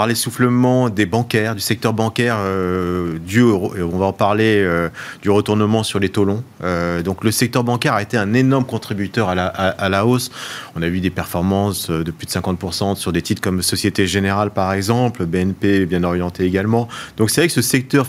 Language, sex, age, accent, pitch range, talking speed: French, male, 30-49, French, 100-130 Hz, 200 wpm